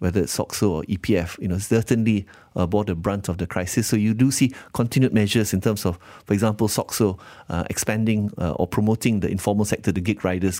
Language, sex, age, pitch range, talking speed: English, male, 30-49, 95-115 Hz, 215 wpm